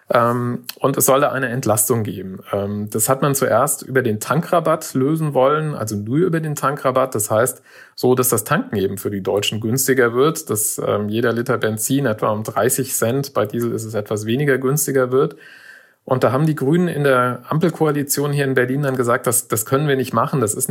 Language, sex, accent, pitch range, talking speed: German, male, German, 115-140 Hz, 200 wpm